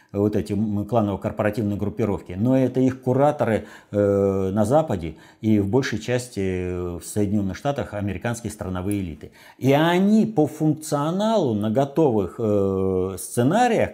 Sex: male